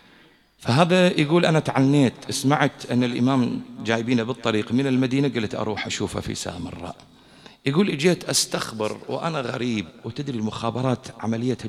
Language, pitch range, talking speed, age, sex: English, 110-145 Hz, 125 wpm, 50-69, male